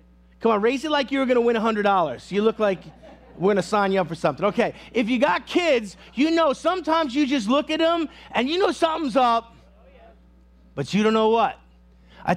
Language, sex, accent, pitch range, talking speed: English, male, American, 190-260 Hz, 225 wpm